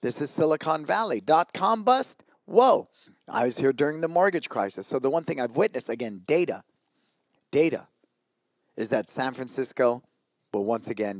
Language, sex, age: English, male, 50-69